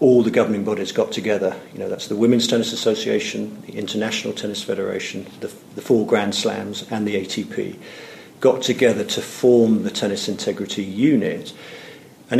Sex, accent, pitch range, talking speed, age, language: male, British, 105-120 Hz, 165 wpm, 50-69, English